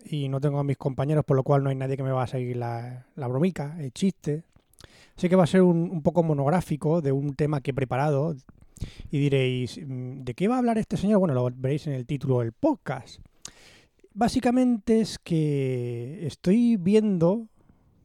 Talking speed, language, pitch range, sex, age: 195 wpm, Spanish, 130-180 Hz, male, 20-39